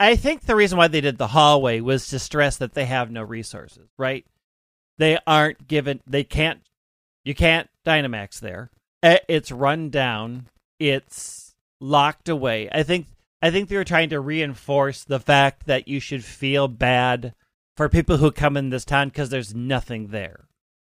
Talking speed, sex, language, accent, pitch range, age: 170 wpm, male, English, American, 120-155 Hz, 40-59